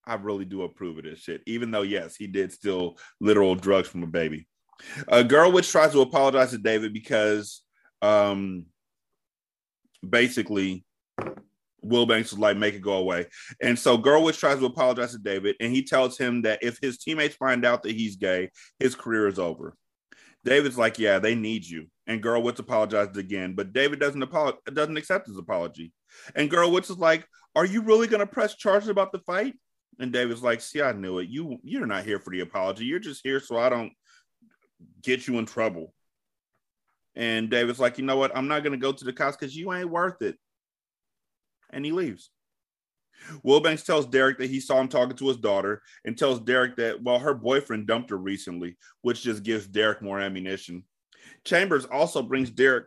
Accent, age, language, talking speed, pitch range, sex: American, 30-49, English, 195 wpm, 105-135 Hz, male